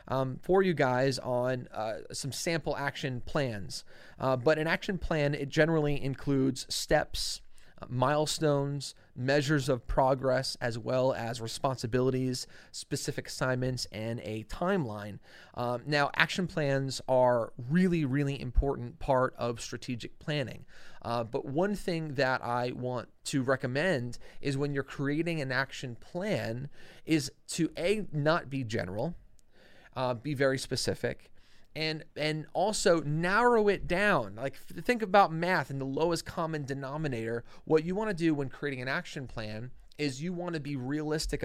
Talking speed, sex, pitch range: 150 wpm, male, 125-160 Hz